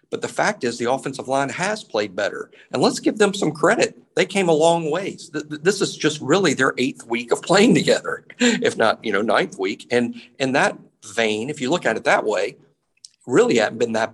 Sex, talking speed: male, 220 wpm